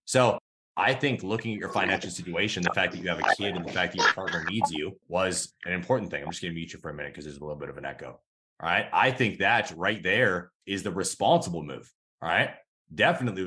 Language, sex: English, male